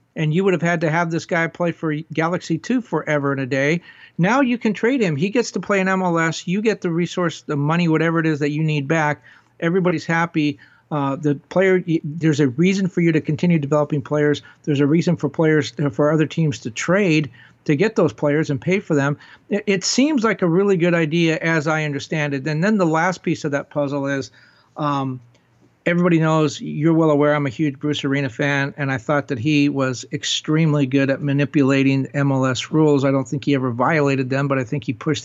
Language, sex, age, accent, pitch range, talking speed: English, male, 50-69, American, 145-170 Hz, 220 wpm